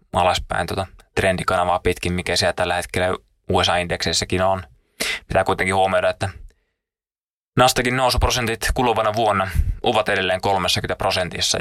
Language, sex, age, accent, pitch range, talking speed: Finnish, male, 20-39, native, 90-105 Hz, 110 wpm